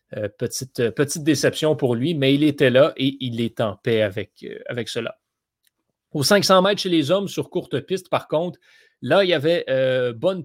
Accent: Canadian